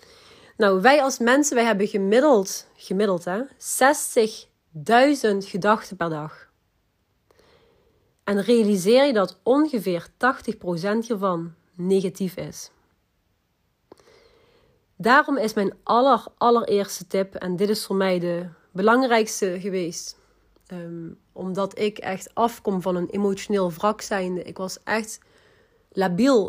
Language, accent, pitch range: Dutch, Dutch, 185-245 Hz